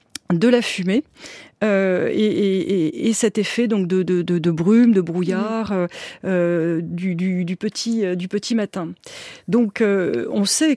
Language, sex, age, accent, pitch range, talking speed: French, female, 40-59, French, 180-215 Hz, 160 wpm